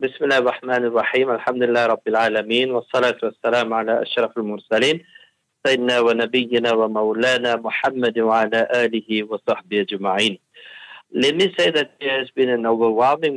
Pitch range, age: 115-130 Hz, 60-79